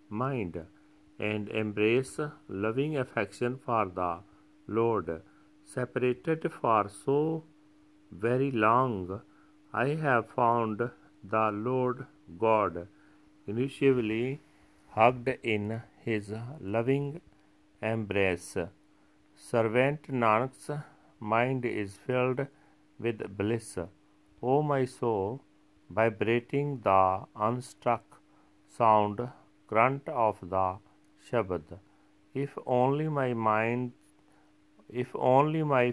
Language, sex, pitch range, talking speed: Punjabi, male, 100-130 Hz, 85 wpm